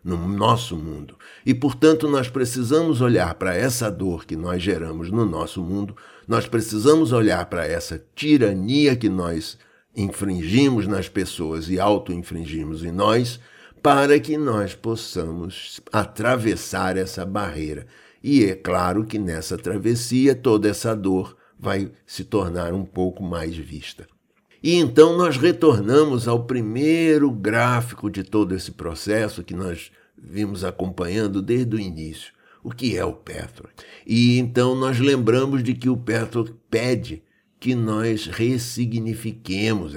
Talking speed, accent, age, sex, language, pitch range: 135 wpm, Brazilian, 60-79, male, Portuguese, 90-125 Hz